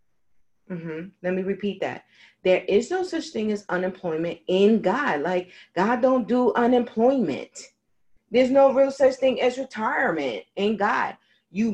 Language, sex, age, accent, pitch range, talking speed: English, female, 40-59, American, 160-245 Hz, 155 wpm